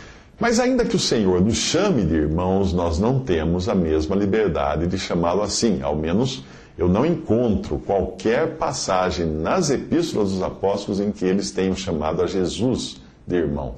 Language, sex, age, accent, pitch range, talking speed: English, male, 50-69, Brazilian, 80-110 Hz, 165 wpm